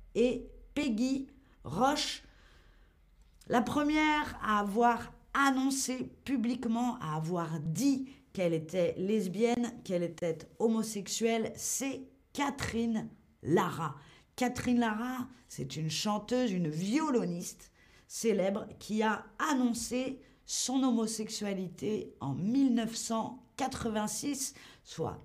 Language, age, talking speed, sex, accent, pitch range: French, 40-59, 90 wpm, female, French, 170-245 Hz